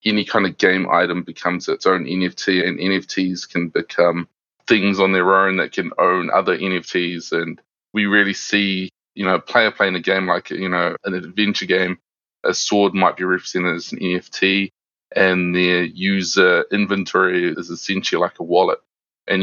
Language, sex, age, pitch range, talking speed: English, male, 20-39, 90-100 Hz, 175 wpm